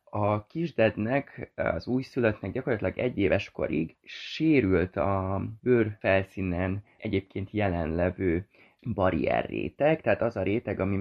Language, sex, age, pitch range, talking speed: Hungarian, male, 20-39, 90-115 Hz, 105 wpm